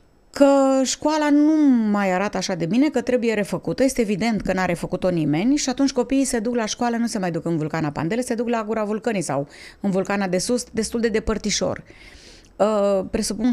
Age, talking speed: 30-49, 200 wpm